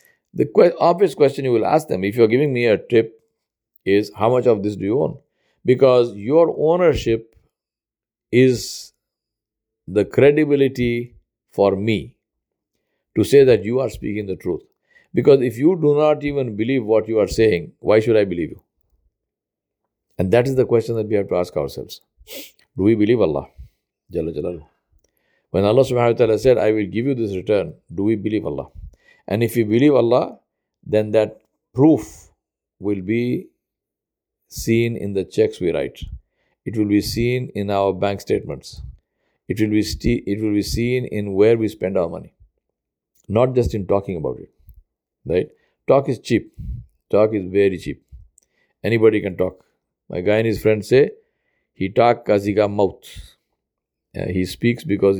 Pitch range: 100-120 Hz